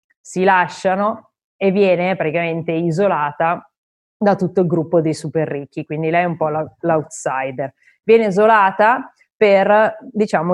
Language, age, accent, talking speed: Italian, 20-39, native, 130 wpm